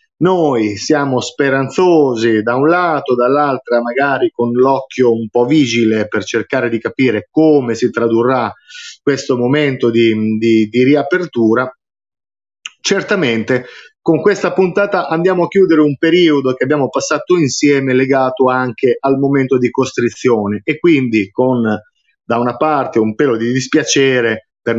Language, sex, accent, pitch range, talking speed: Italian, male, native, 120-160 Hz, 135 wpm